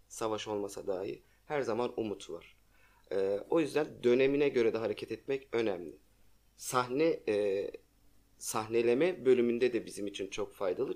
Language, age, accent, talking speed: Turkish, 30-49, native, 135 wpm